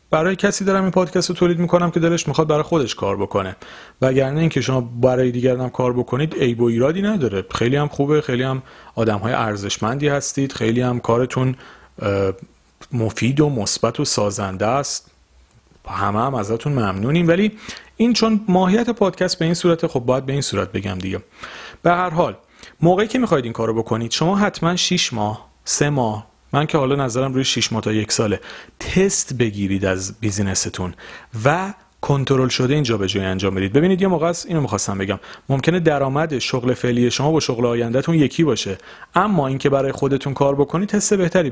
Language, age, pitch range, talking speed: Persian, 40-59, 115-175 Hz, 185 wpm